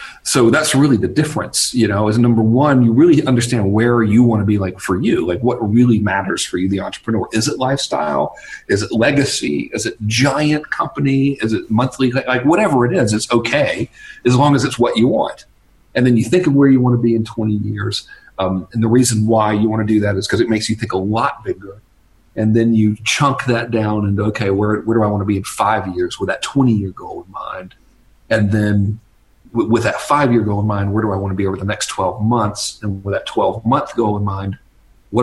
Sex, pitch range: male, 100-120 Hz